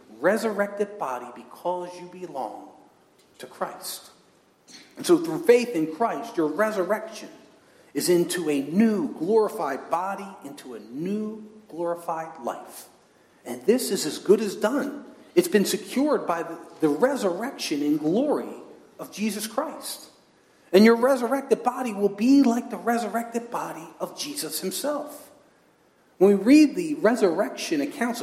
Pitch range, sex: 190-290 Hz, male